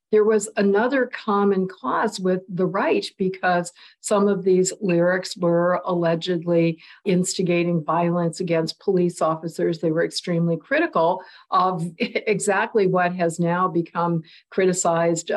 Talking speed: 120 wpm